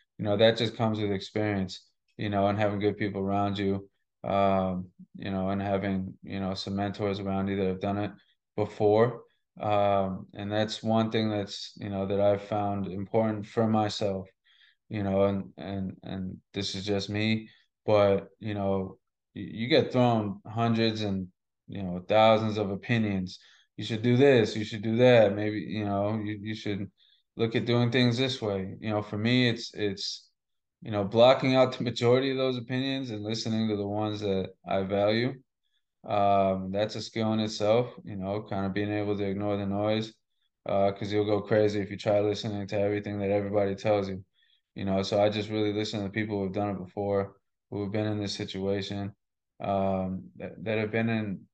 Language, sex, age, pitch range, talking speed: English, male, 20-39, 100-110 Hz, 195 wpm